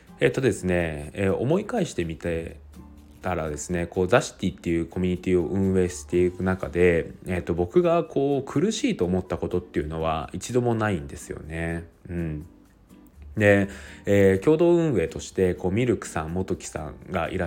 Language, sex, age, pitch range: Japanese, male, 20-39, 85-115 Hz